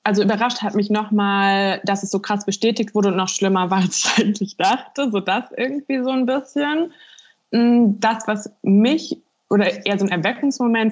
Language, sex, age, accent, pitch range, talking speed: German, female, 20-39, German, 180-215 Hz, 175 wpm